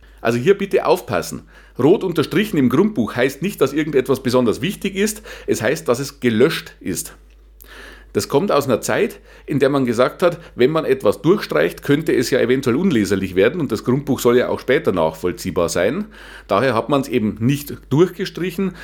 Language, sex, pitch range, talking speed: German, male, 120-185 Hz, 180 wpm